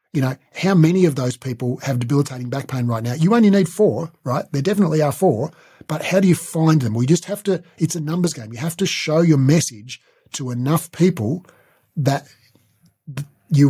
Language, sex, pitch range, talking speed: English, male, 120-160 Hz, 210 wpm